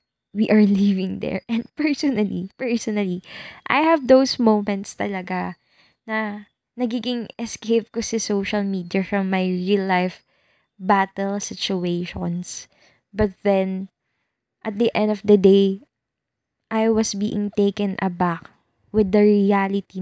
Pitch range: 185-220 Hz